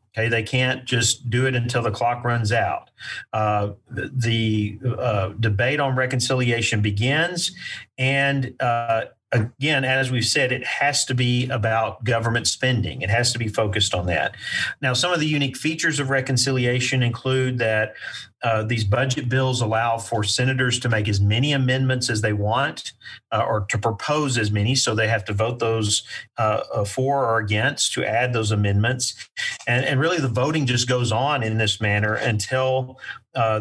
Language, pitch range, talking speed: English, 110-130 Hz, 170 wpm